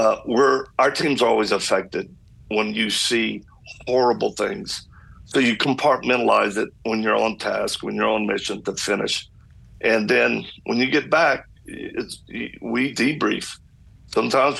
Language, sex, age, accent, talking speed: English, male, 50-69, American, 145 wpm